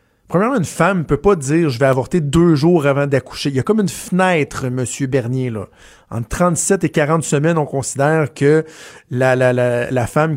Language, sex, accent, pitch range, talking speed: French, male, Canadian, 130-160 Hz, 205 wpm